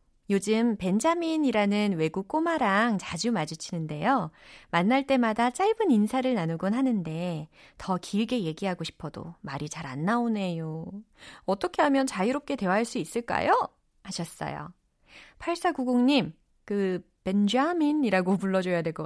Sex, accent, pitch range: female, native, 170-265 Hz